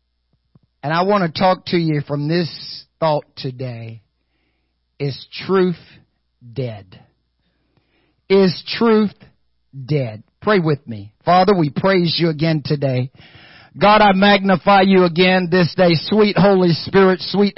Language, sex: English, male